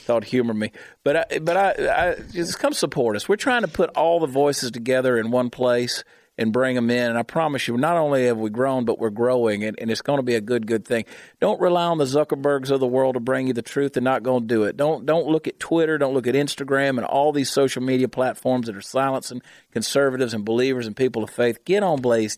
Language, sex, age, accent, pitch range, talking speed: English, male, 40-59, American, 115-145 Hz, 255 wpm